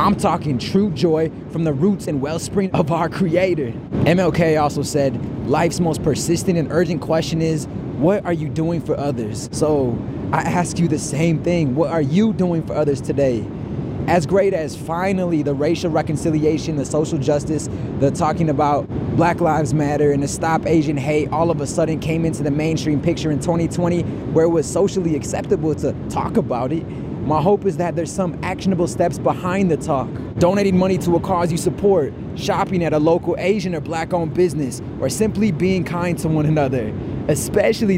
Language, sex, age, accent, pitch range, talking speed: English, male, 20-39, American, 150-175 Hz, 185 wpm